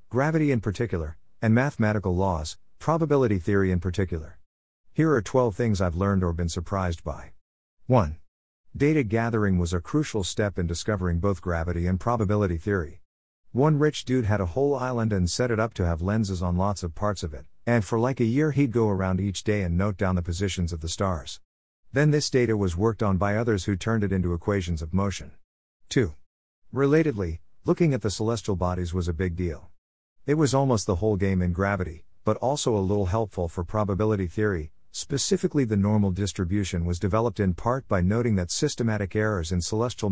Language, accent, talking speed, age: English, American, 195 wpm, 50-69